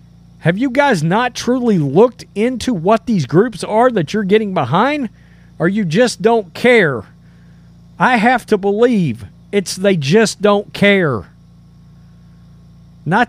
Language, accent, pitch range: English, American, 155-205 Hz